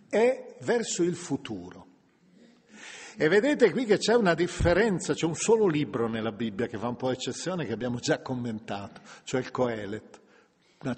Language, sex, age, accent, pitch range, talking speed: Italian, male, 50-69, native, 130-195 Hz, 165 wpm